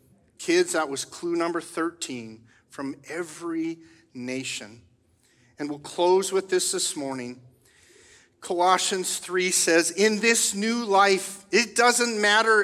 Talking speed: 125 wpm